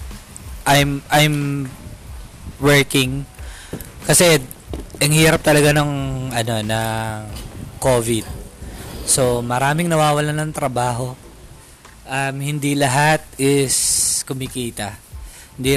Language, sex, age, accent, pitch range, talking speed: Filipino, male, 20-39, native, 115-145 Hz, 85 wpm